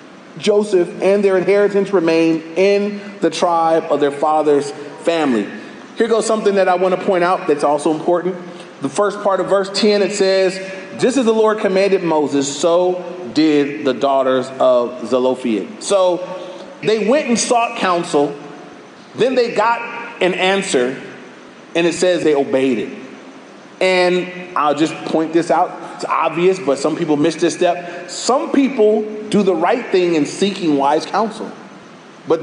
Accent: American